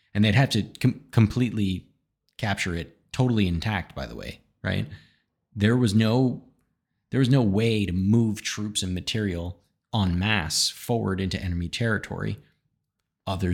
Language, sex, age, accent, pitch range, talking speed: English, male, 30-49, American, 90-110 Hz, 135 wpm